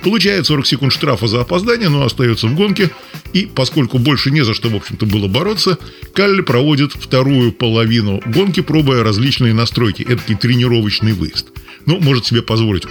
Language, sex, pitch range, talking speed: Russian, male, 120-150 Hz, 165 wpm